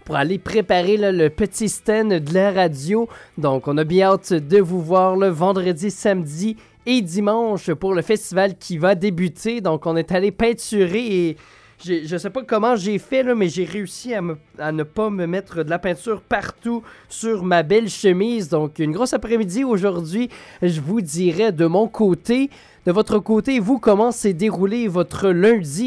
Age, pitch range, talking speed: 20-39, 175-230 Hz, 180 wpm